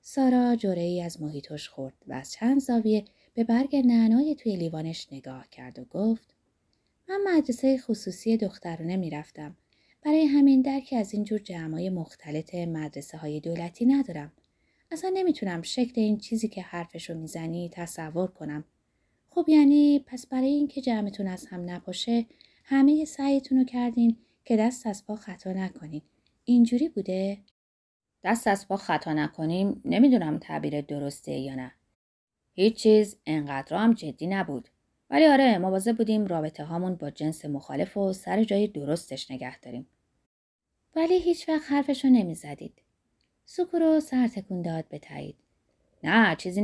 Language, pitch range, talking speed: Persian, 160-255 Hz, 140 wpm